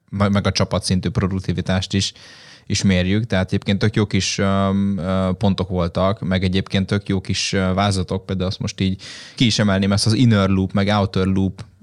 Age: 10-29